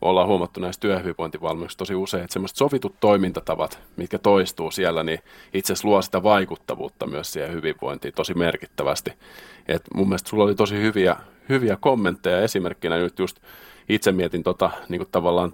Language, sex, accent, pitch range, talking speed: Finnish, male, native, 90-105 Hz, 160 wpm